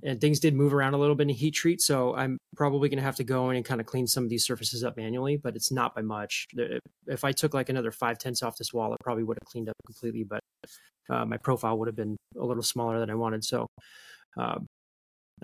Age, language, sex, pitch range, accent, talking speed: 20-39, English, male, 120-145 Hz, American, 260 wpm